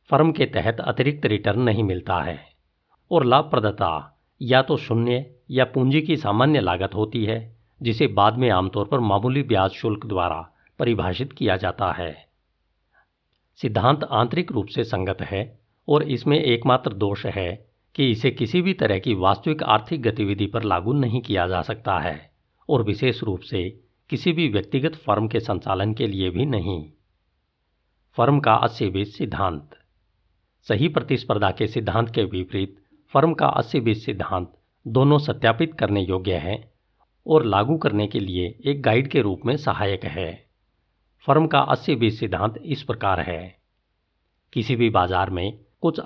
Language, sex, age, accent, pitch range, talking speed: Hindi, male, 50-69, native, 95-130 Hz, 150 wpm